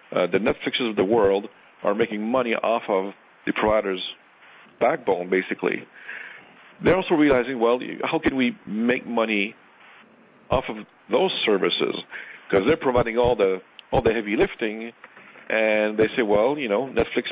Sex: male